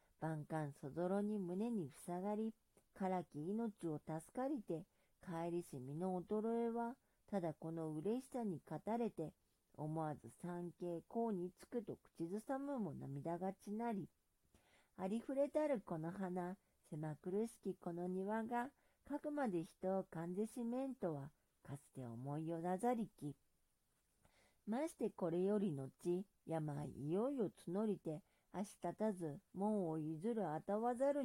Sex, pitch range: female, 155-215 Hz